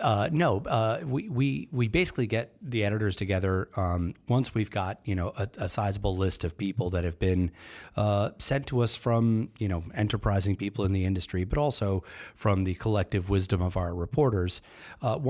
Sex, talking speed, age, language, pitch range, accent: male, 190 wpm, 40-59, English, 95-115 Hz, American